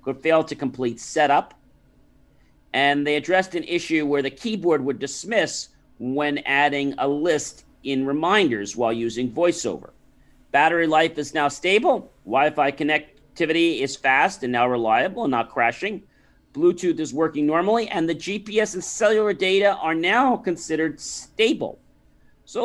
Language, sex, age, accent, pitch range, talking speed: English, male, 40-59, American, 140-190 Hz, 145 wpm